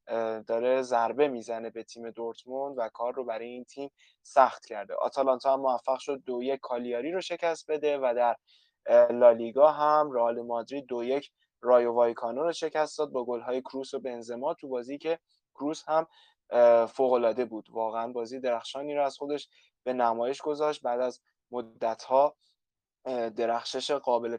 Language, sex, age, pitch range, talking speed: Persian, male, 20-39, 115-145 Hz, 155 wpm